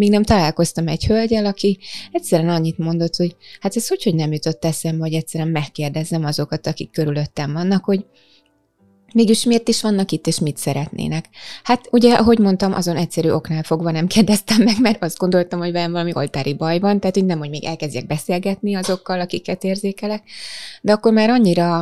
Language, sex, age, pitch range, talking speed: Hungarian, female, 20-39, 160-195 Hz, 185 wpm